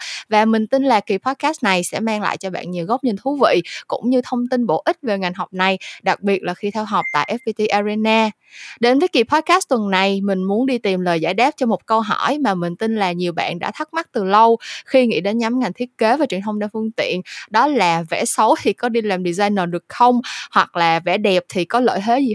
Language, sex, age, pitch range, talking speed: Vietnamese, female, 20-39, 185-255 Hz, 260 wpm